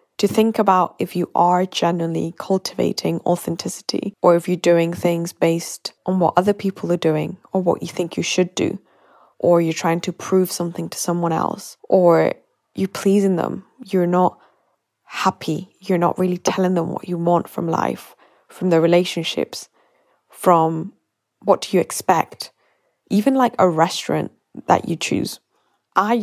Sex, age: female, 10-29